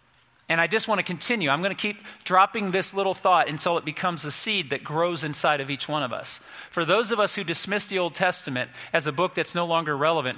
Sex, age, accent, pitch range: male, 40-59, American, 150-195 Hz